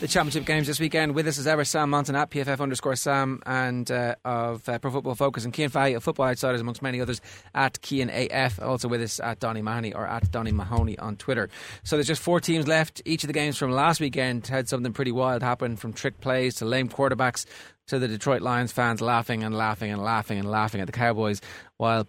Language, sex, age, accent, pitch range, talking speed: English, male, 20-39, Irish, 110-140 Hz, 235 wpm